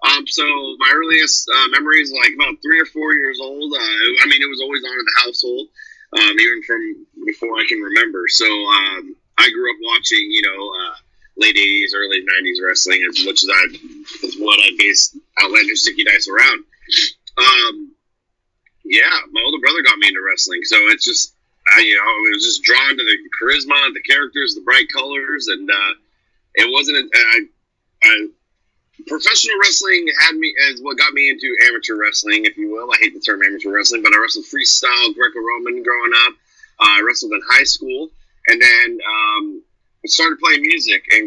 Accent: American